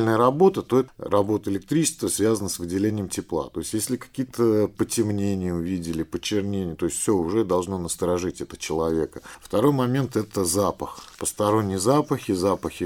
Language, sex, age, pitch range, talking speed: Russian, male, 50-69, 80-105 Hz, 145 wpm